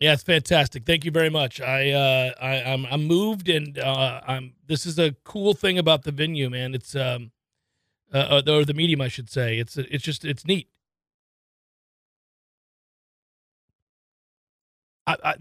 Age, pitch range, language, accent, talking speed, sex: 40-59, 130-165 Hz, English, American, 160 wpm, male